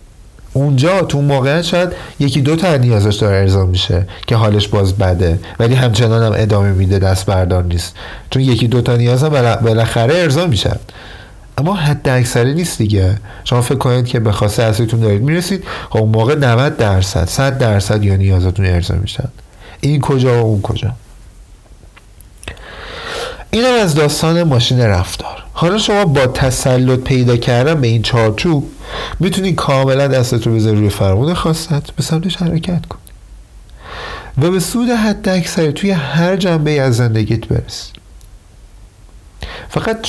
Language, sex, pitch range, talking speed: Persian, male, 100-145 Hz, 155 wpm